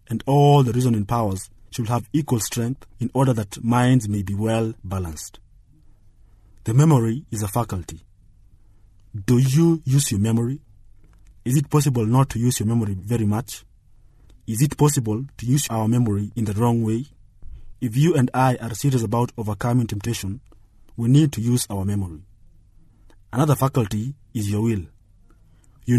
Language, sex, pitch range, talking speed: English, male, 100-125 Hz, 160 wpm